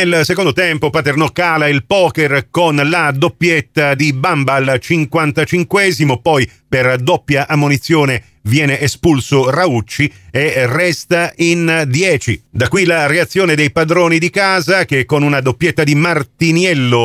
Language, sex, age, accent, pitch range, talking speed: Italian, male, 40-59, native, 140-180 Hz, 135 wpm